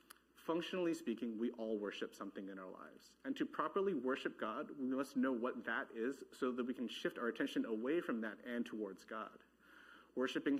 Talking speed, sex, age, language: 195 wpm, male, 30-49, English